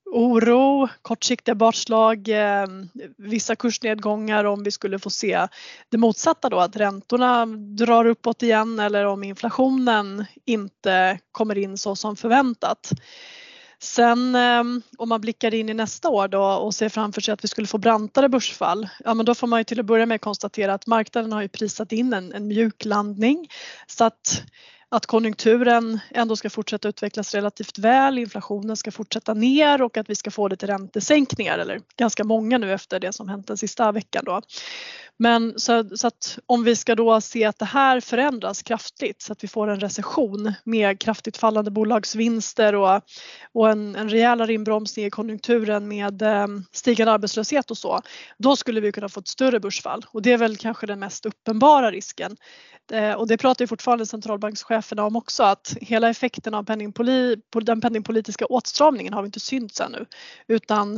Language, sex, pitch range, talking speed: Swedish, female, 210-235 Hz, 175 wpm